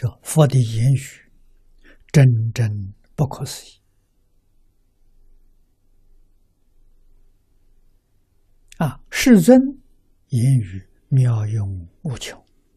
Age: 60-79